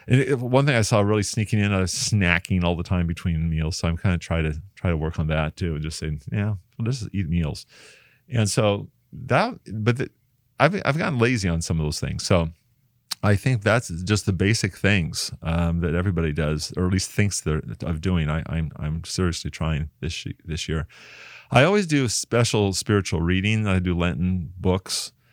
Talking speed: 205 wpm